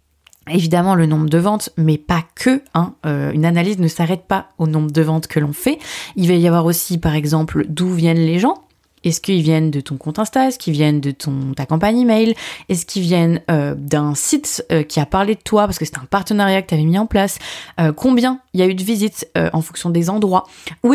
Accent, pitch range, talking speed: French, 160-220 Hz, 245 wpm